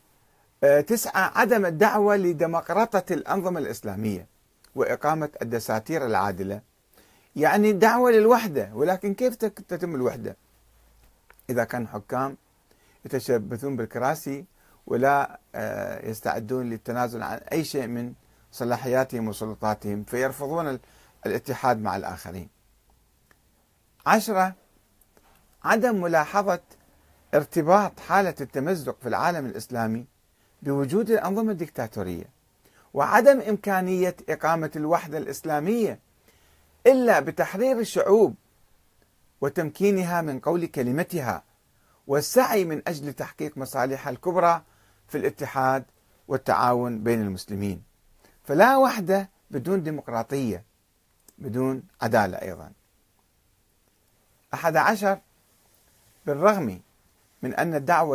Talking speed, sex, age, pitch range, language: 85 wpm, male, 50-69, 115-180 Hz, Arabic